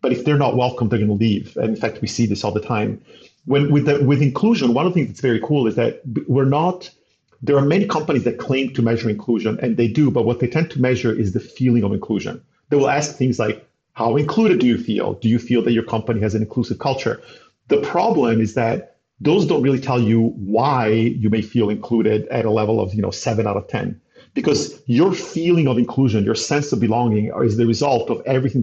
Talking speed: 240 wpm